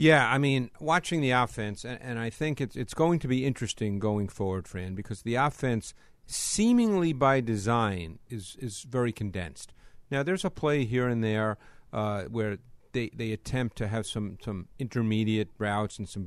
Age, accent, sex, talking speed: 50-69, American, male, 190 wpm